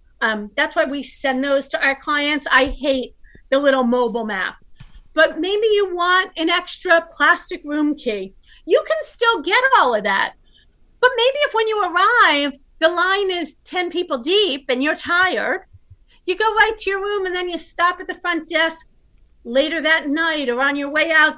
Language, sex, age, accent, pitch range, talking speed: English, female, 40-59, American, 265-360 Hz, 190 wpm